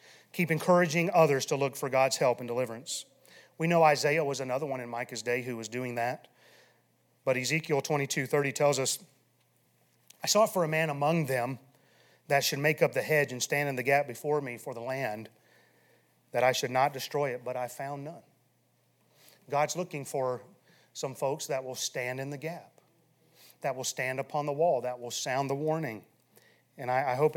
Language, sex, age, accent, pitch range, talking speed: English, male, 30-49, American, 125-150 Hz, 190 wpm